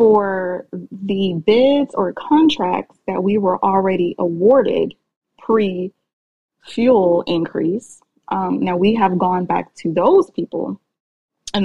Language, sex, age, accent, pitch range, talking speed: English, female, 20-39, American, 180-225 Hz, 115 wpm